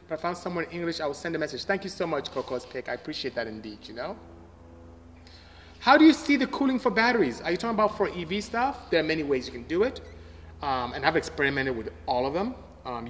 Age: 30-49